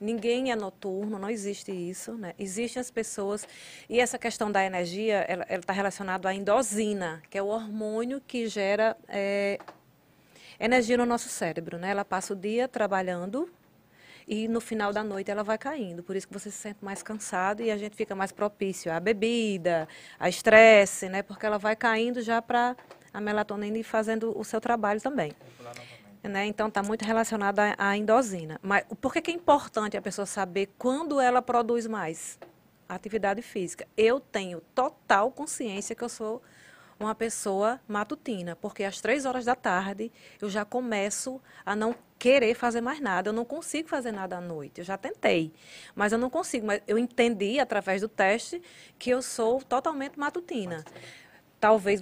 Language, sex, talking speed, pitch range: Portuguese, female, 175 wpm, 195-235 Hz